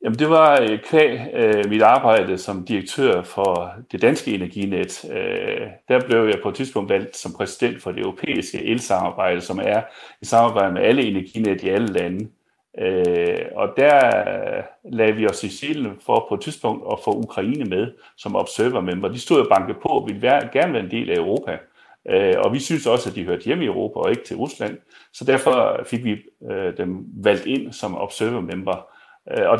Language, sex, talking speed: Danish, male, 195 wpm